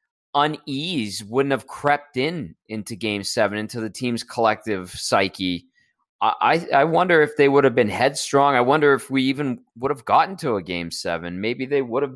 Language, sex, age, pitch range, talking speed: English, male, 20-39, 100-130 Hz, 190 wpm